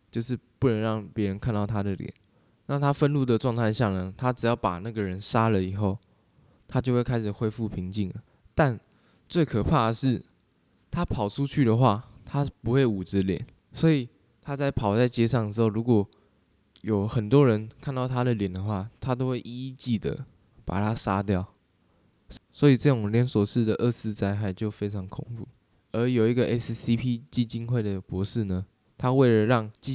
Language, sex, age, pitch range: Chinese, male, 20-39, 100-125 Hz